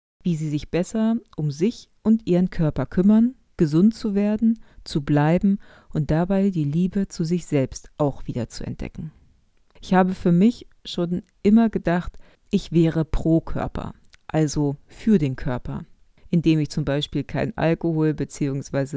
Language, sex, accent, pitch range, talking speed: German, female, German, 150-200 Hz, 150 wpm